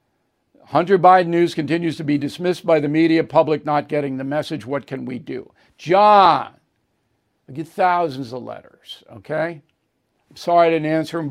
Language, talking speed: English, 170 wpm